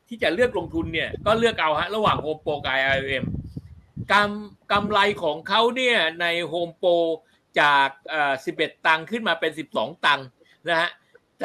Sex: male